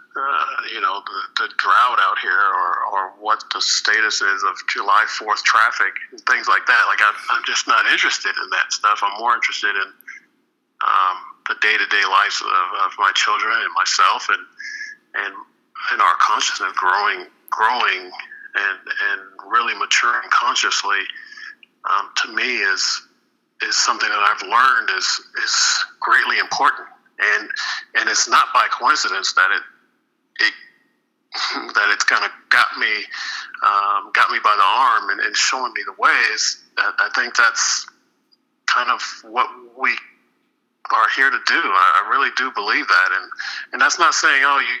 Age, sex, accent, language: 50-69, male, American, English